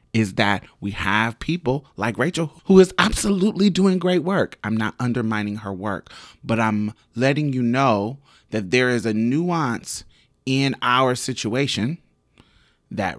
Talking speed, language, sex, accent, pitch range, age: 145 wpm, English, male, American, 105-140 Hz, 30-49